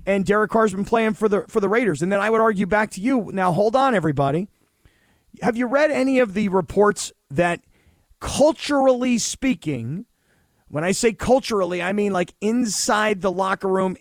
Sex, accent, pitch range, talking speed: male, American, 175-230 Hz, 180 wpm